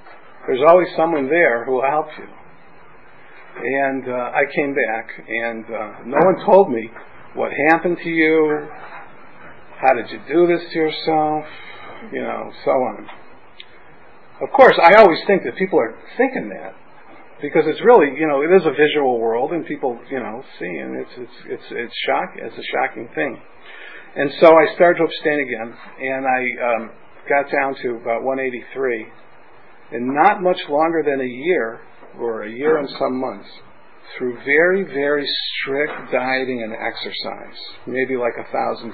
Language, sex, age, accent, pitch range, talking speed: English, male, 50-69, American, 125-175 Hz, 170 wpm